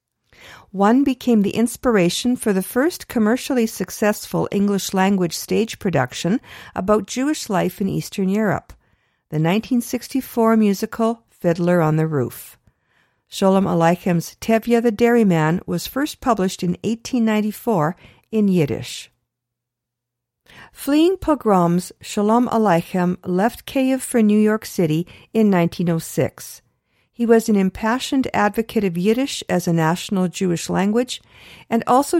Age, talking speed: 50-69, 115 wpm